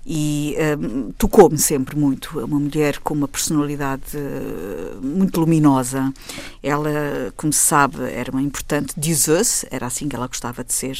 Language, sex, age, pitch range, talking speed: Portuguese, female, 50-69, 140-155 Hz, 145 wpm